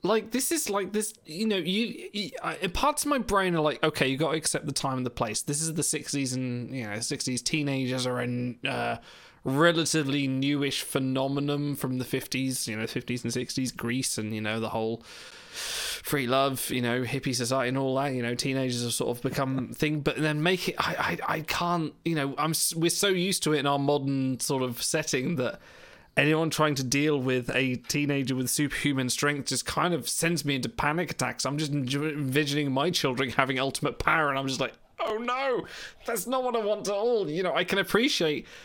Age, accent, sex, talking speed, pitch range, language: 20-39, British, male, 215 wpm, 130-170 Hz, English